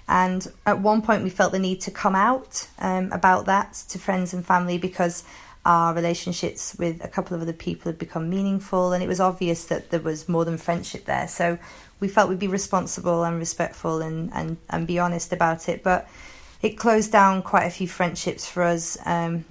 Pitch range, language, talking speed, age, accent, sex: 175-200 Hz, English, 205 wpm, 30-49, British, female